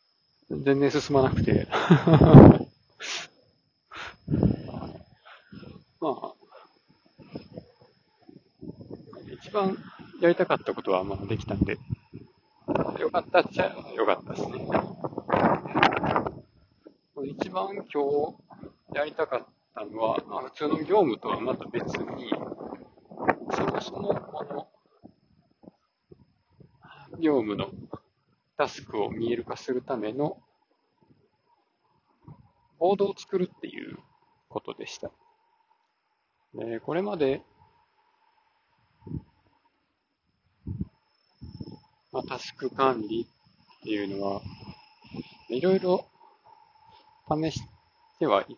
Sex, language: male, Japanese